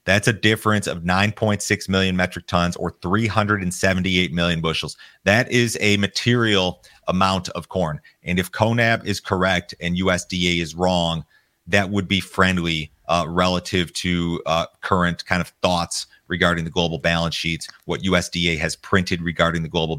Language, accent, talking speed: English, American, 155 wpm